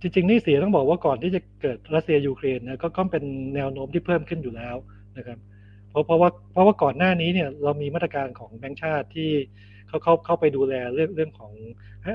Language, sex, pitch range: Thai, male, 120-160 Hz